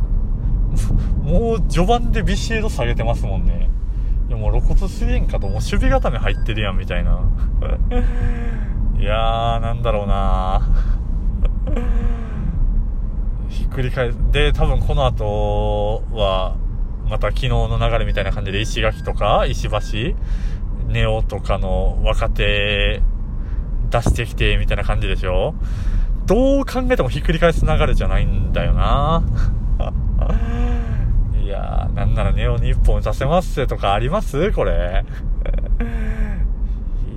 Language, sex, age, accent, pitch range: Japanese, male, 20-39, native, 100-120 Hz